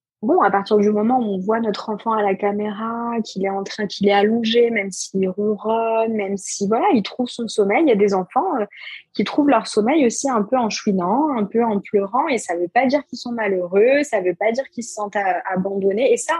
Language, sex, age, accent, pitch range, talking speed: French, female, 20-39, French, 195-250 Hz, 245 wpm